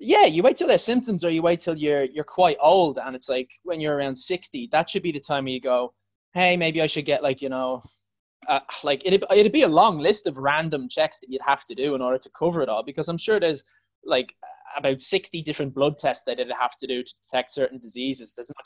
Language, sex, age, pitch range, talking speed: English, male, 20-39, 125-160 Hz, 255 wpm